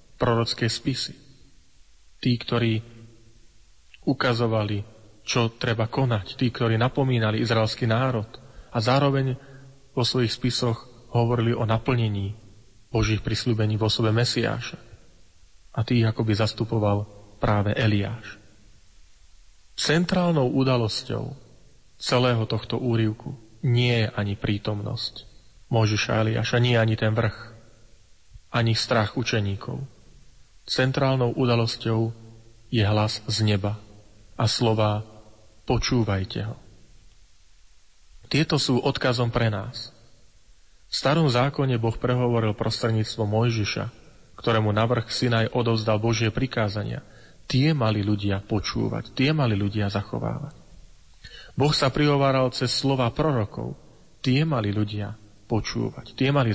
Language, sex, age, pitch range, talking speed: Slovak, male, 40-59, 105-125 Hz, 105 wpm